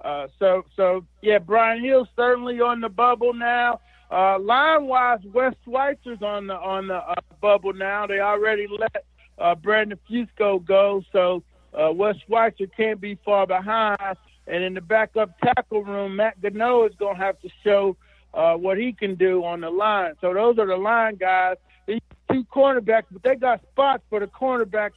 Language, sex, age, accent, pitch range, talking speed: English, male, 60-79, American, 185-225 Hz, 180 wpm